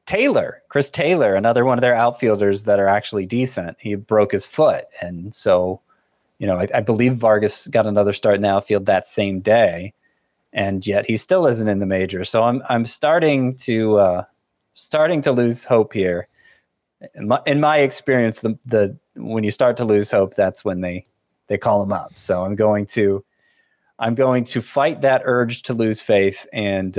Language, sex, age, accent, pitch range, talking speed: English, male, 30-49, American, 100-125 Hz, 190 wpm